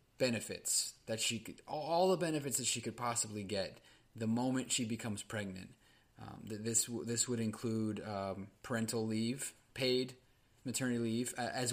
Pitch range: 105-125 Hz